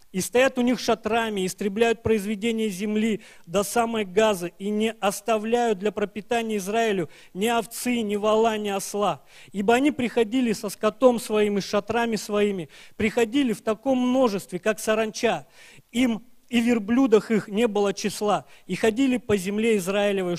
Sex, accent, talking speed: male, native, 145 wpm